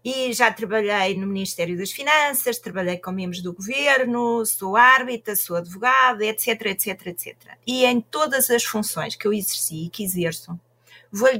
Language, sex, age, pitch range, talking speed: Portuguese, female, 30-49, 200-260 Hz, 165 wpm